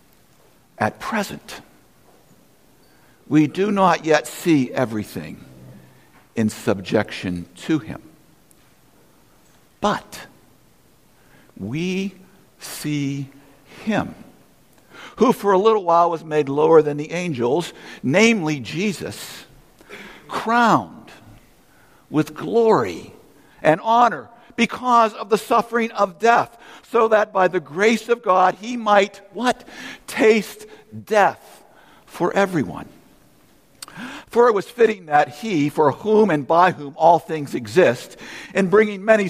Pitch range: 150-225 Hz